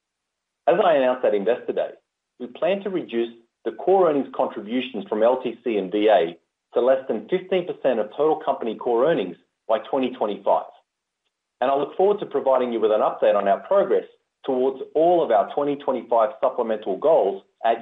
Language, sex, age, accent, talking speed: English, male, 30-49, Australian, 170 wpm